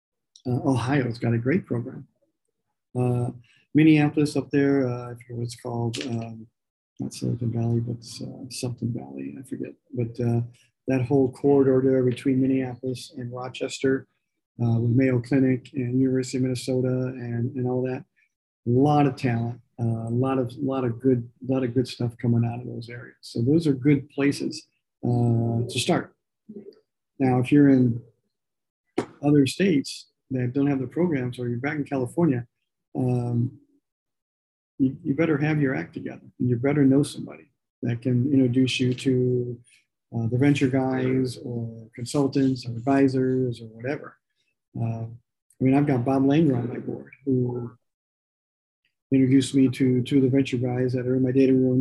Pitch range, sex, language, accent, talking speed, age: 120-135 Hz, male, English, American, 165 wpm, 40-59